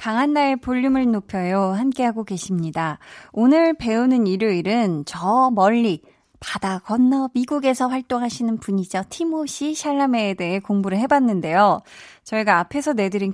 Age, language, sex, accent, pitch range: 20-39, Korean, female, native, 190-265 Hz